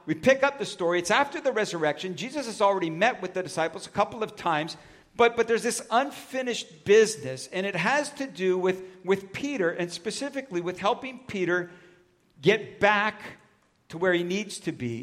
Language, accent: English, American